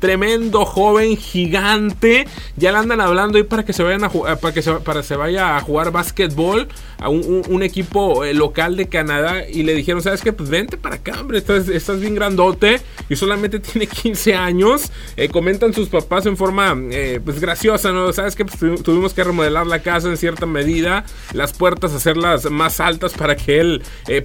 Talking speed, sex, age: 205 wpm, male, 30-49